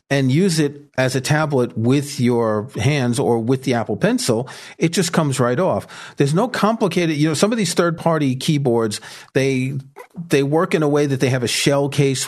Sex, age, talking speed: male, 40-59, 200 wpm